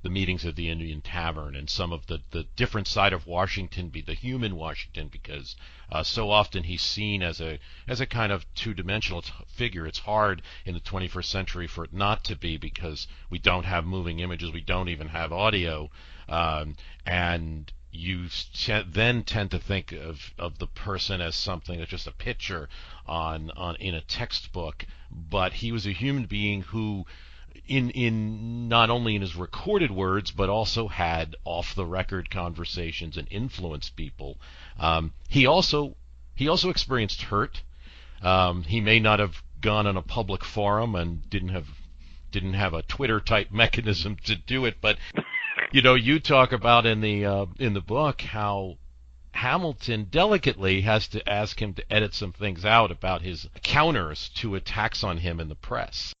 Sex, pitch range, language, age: male, 80-105 Hz, English, 50-69